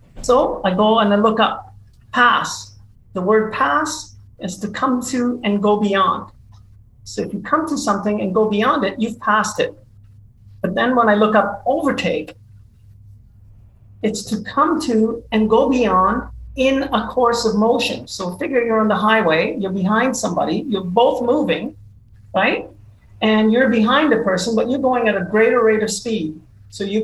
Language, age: English, 40-59